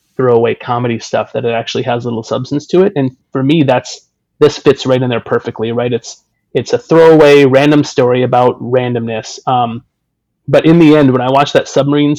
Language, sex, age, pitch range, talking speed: English, male, 30-49, 125-140 Hz, 200 wpm